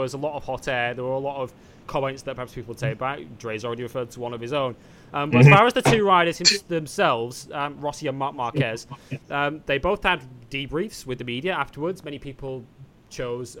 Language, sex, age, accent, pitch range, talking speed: English, male, 20-39, British, 130-165 Hz, 225 wpm